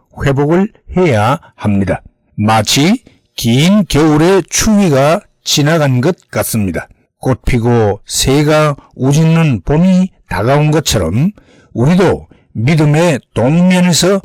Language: Korean